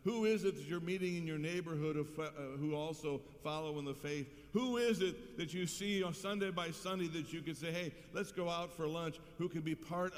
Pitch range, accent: 110-160 Hz, American